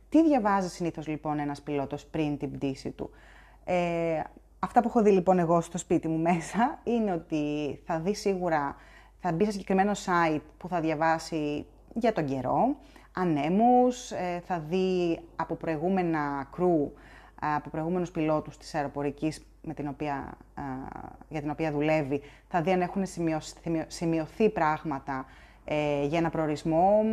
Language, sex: Greek, female